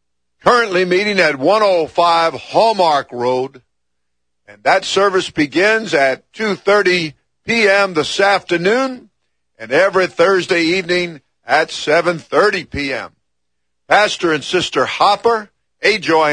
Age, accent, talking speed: 50-69, American, 100 wpm